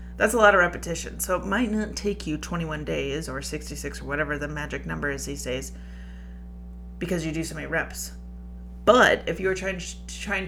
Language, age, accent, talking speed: English, 30-49, American, 190 wpm